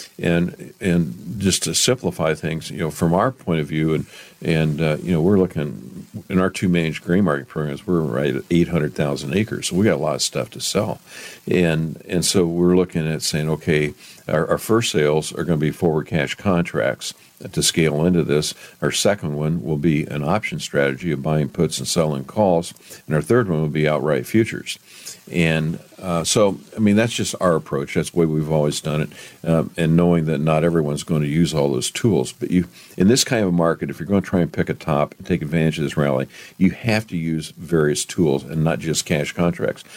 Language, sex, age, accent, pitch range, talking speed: English, male, 50-69, American, 75-90 Hz, 225 wpm